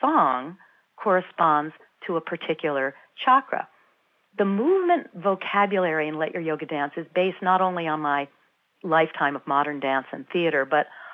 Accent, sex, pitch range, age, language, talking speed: American, female, 155-195 Hz, 50-69, English, 145 wpm